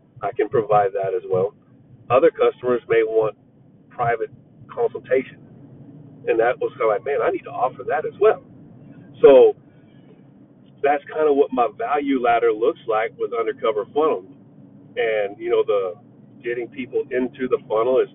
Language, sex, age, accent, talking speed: English, male, 40-59, American, 160 wpm